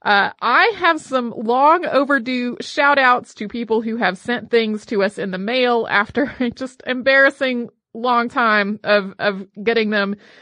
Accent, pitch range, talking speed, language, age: American, 210-255 Hz, 160 wpm, English, 30-49